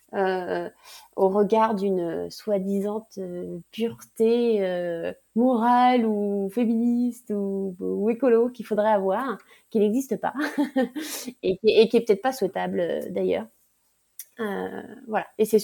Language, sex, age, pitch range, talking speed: French, female, 30-49, 185-225 Hz, 125 wpm